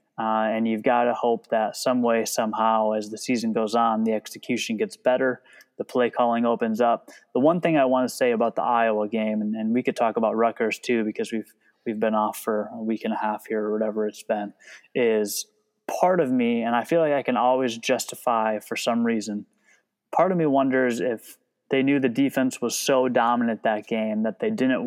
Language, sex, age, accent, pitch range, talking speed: English, male, 20-39, American, 110-130 Hz, 220 wpm